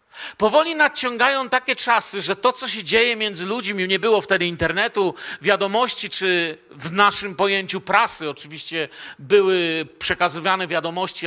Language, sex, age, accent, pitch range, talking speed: Polish, male, 50-69, native, 190-225 Hz, 135 wpm